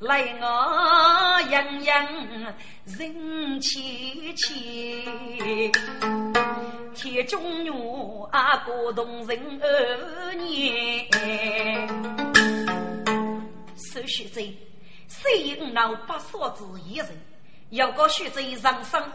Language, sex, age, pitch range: Chinese, female, 30-49, 220-305 Hz